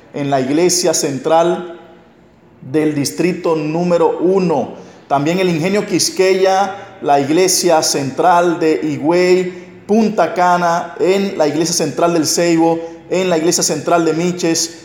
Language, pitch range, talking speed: English, 155-180 Hz, 125 wpm